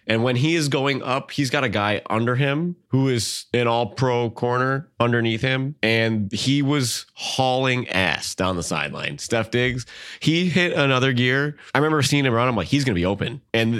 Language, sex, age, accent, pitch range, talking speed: English, male, 20-39, American, 95-120 Hz, 205 wpm